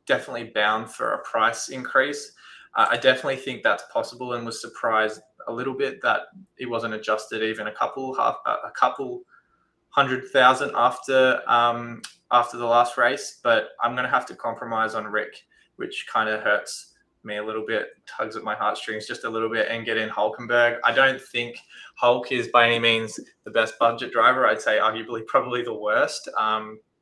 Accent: Australian